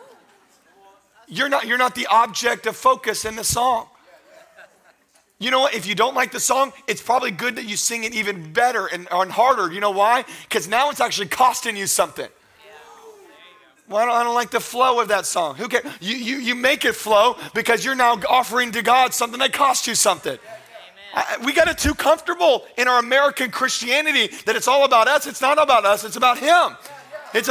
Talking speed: 205 wpm